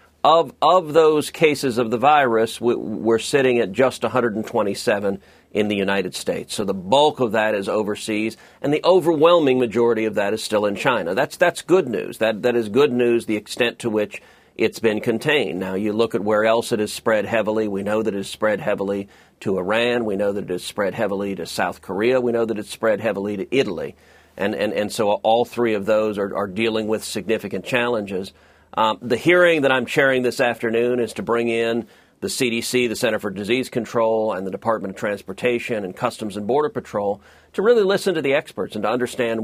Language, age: English, 50-69